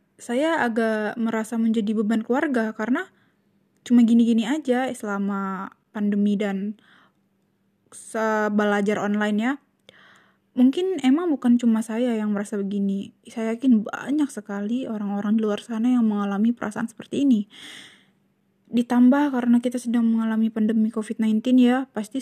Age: 20-39